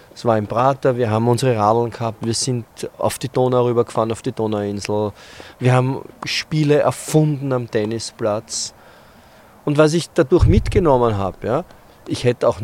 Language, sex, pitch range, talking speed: German, male, 110-135 Hz, 160 wpm